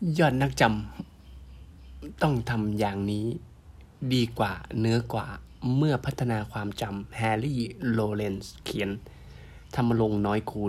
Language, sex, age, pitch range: Thai, male, 20-39, 100-120 Hz